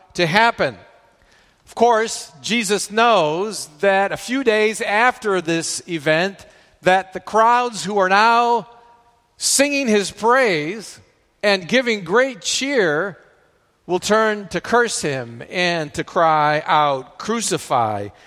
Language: English